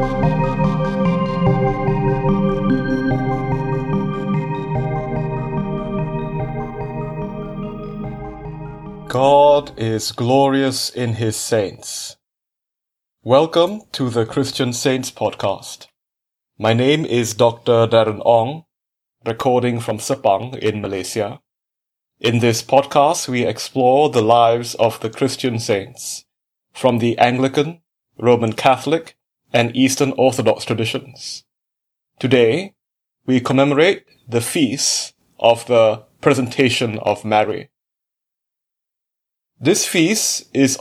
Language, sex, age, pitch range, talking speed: English, male, 30-49, 115-145 Hz, 80 wpm